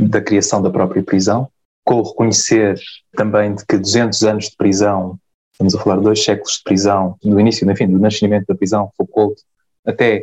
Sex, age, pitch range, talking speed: male, 20-39, 100-115 Hz, 190 wpm